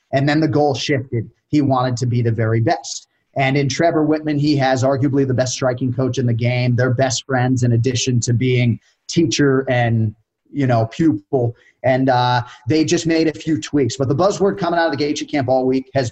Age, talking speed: 30-49, 215 wpm